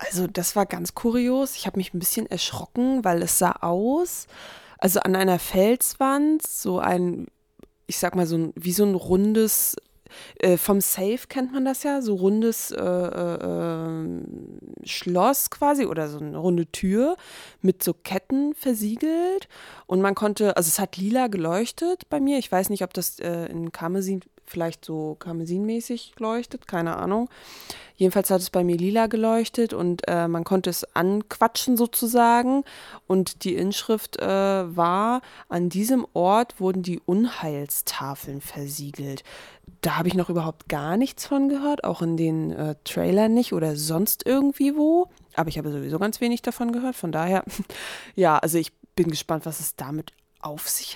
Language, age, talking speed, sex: German, 20-39, 165 wpm, female